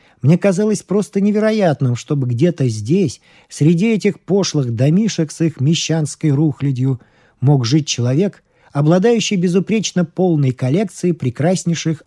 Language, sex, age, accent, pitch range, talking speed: Russian, male, 40-59, native, 140-195 Hz, 115 wpm